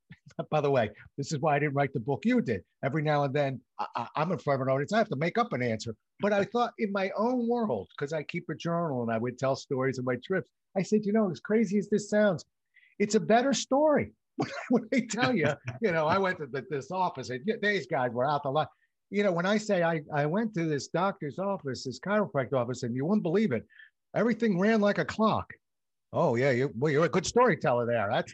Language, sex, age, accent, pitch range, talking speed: English, male, 50-69, American, 140-205 Hz, 245 wpm